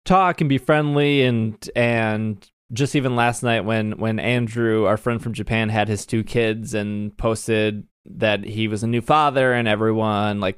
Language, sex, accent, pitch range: English, male, American, 110-130 Hz